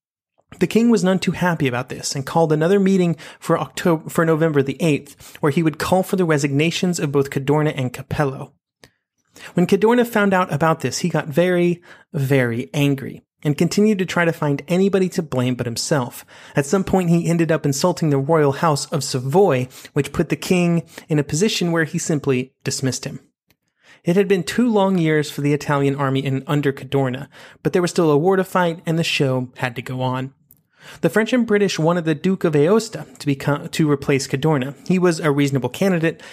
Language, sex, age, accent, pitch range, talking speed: English, male, 30-49, American, 140-180 Hz, 200 wpm